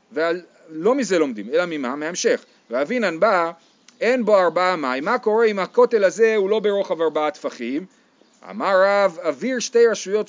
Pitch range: 185-250 Hz